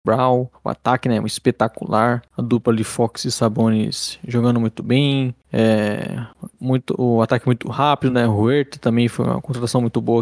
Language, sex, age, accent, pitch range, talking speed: Portuguese, male, 20-39, Brazilian, 115-135 Hz, 175 wpm